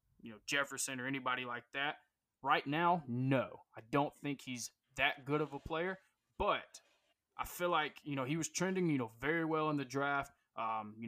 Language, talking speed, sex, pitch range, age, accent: English, 200 wpm, male, 125-150 Hz, 20-39, American